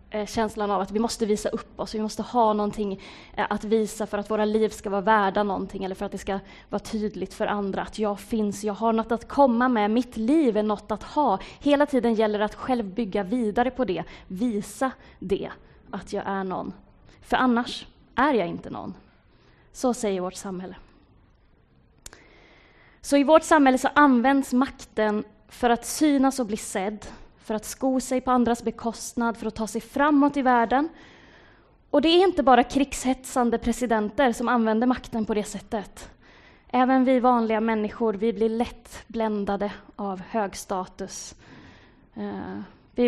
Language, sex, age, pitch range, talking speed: Swedish, female, 20-39, 205-250 Hz, 175 wpm